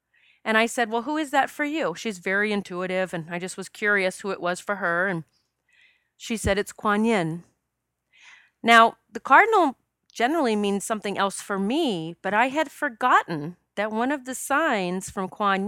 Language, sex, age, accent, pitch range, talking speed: English, female, 40-59, American, 175-235 Hz, 185 wpm